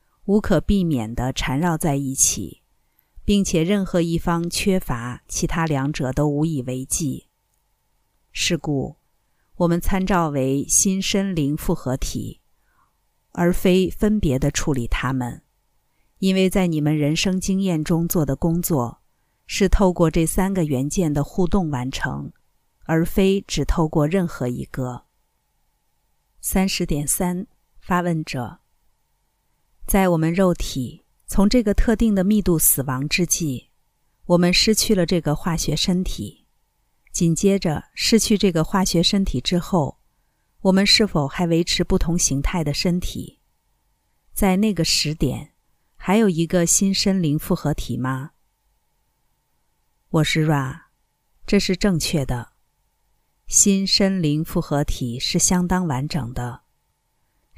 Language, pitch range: Chinese, 145-190 Hz